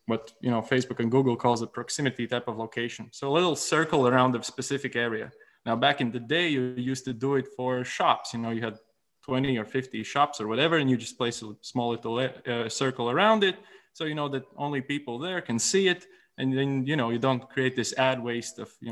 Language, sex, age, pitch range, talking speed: English, male, 20-39, 115-135 Hz, 235 wpm